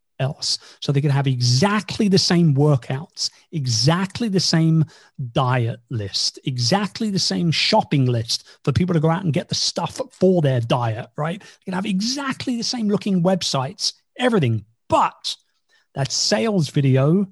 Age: 40-59